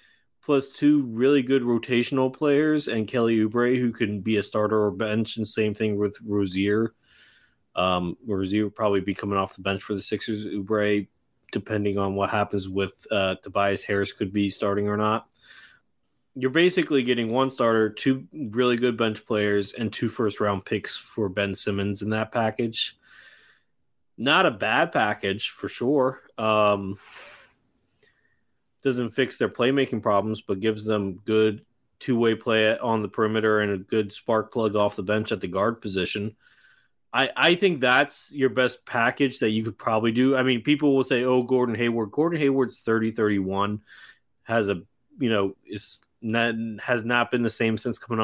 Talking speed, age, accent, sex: 170 wpm, 20-39, American, male